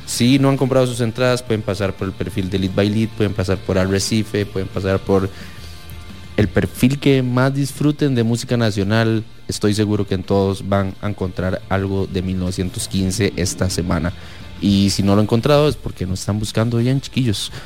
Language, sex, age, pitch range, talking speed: English, male, 20-39, 95-110 Hz, 195 wpm